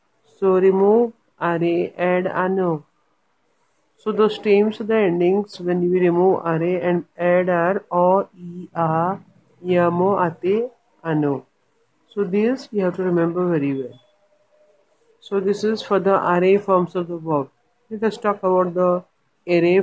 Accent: Indian